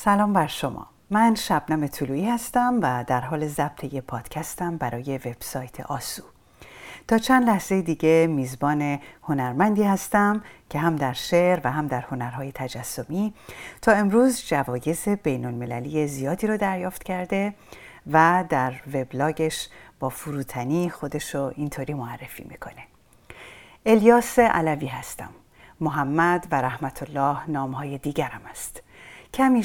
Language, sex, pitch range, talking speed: English, female, 135-190 Hz, 125 wpm